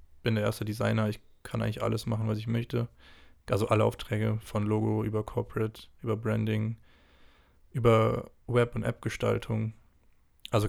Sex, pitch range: male, 105-115 Hz